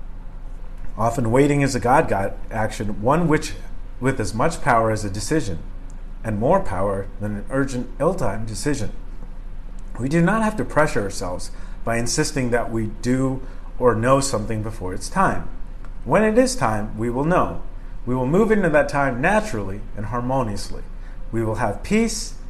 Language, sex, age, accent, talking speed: English, male, 40-59, American, 160 wpm